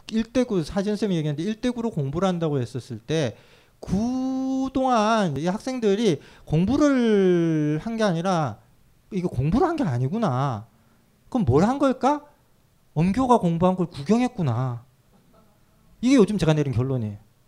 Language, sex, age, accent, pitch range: Korean, male, 40-59, native, 140-210 Hz